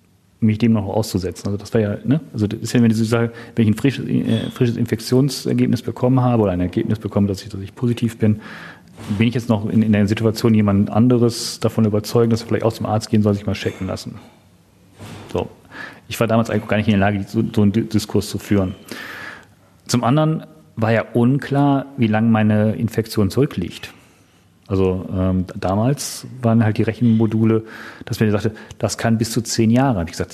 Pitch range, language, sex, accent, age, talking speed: 100-115 Hz, German, male, German, 40-59, 205 wpm